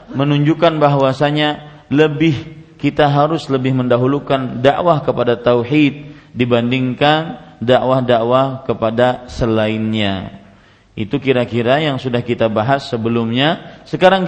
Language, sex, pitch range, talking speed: Malay, male, 120-150 Hz, 95 wpm